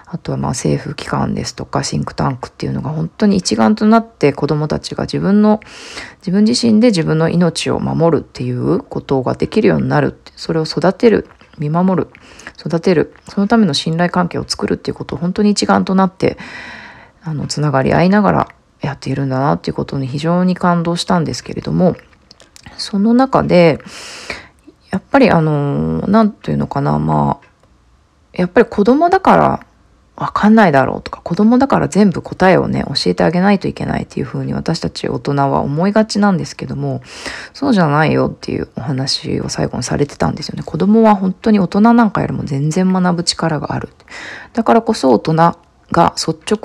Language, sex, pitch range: Japanese, female, 145-210 Hz